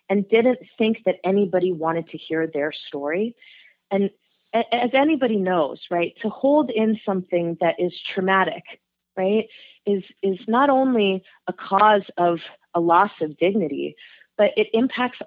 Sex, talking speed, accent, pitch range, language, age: female, 145 wpm, American, 175-220 Hz, English, 30-49